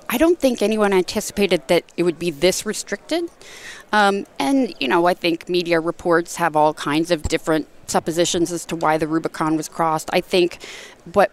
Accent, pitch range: American, 160-195 Hz